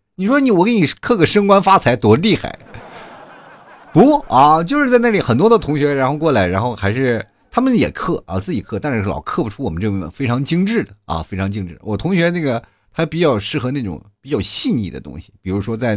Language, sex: Chinese, male